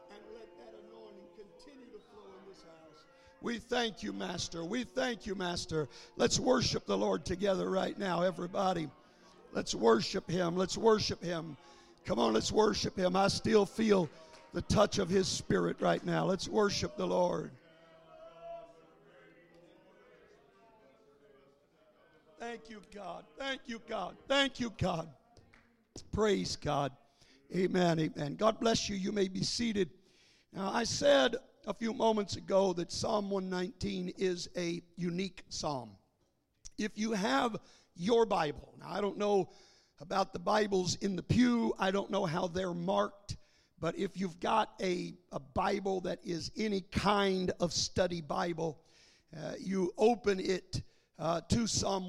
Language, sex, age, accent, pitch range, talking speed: English, male, 60-79, American, 175-215 Hz, 145 wpm